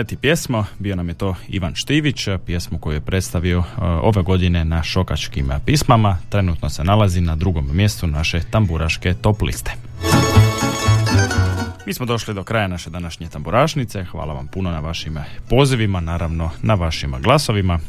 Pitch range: 80-110 Hz